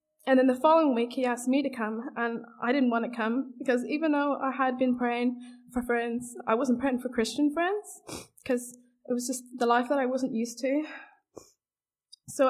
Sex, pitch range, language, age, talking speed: female, 235-270 Hz, English, 20-39, 205 wpm